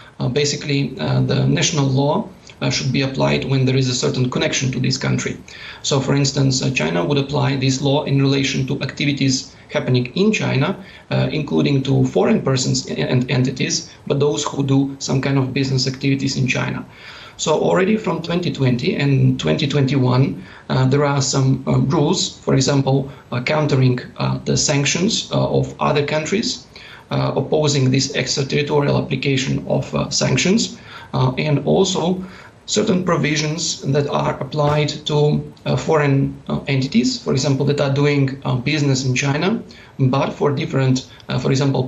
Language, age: English, 40-59